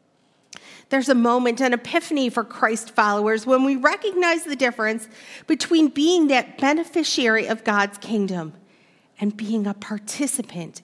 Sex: female